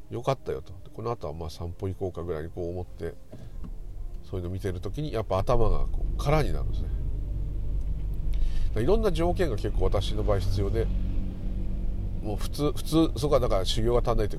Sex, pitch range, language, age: male, 80-105 Hz, Japanese, 40-59